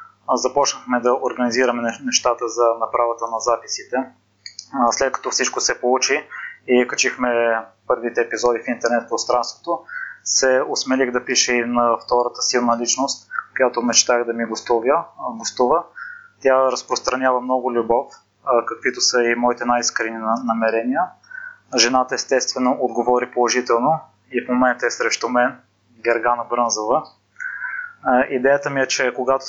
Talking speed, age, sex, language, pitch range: 120 wpm, 20-39, male, Bulgarian, 120-130 Hz